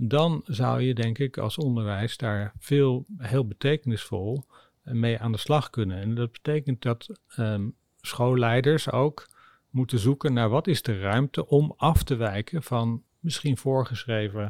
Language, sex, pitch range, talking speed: Dutch, male, 110-130 Hz, 155 wpm